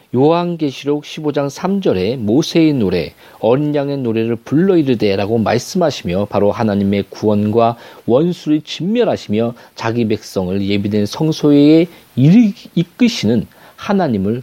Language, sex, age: Korean, male, 40-59